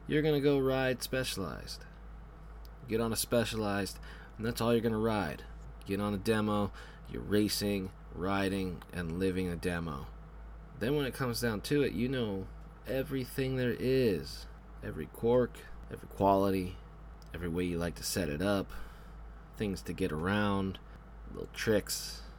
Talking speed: 155 wpm